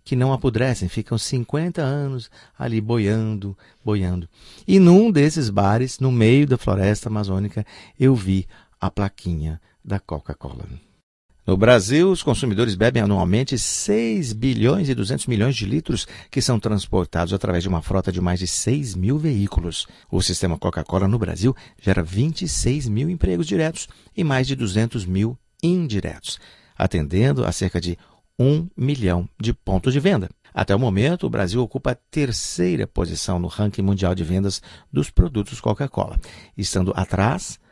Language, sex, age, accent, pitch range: Chinese, male, 50-69, Brazilian, 95-130 Hz